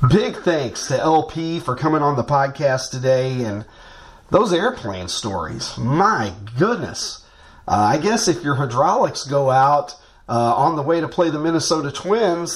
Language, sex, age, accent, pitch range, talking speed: English, male, 40-59, American, 135-195 Hz, 160 wpm